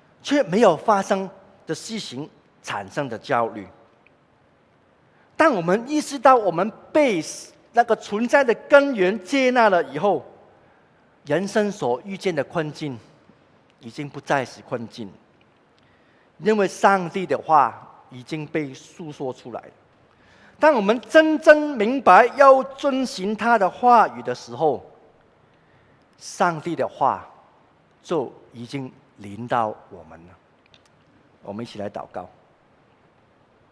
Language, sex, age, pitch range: Chinese, male, 50-69, 120-195 Hz